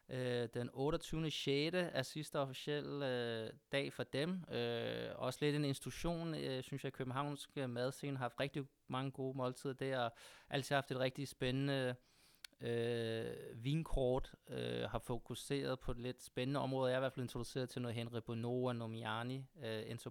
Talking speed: 170 wpm